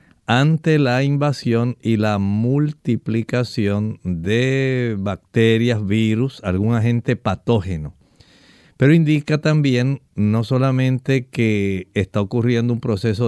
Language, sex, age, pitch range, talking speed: Spanish, male, 50-69, 110-140 Hz, 100 wpm